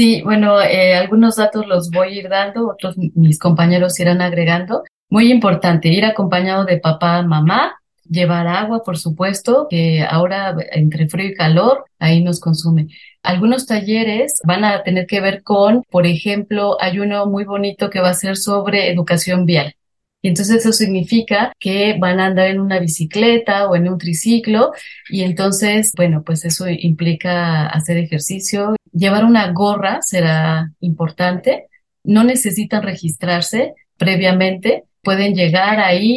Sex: female